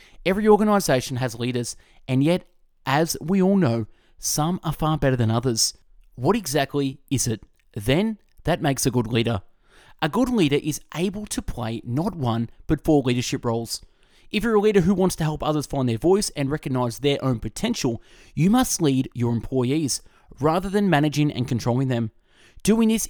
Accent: Australian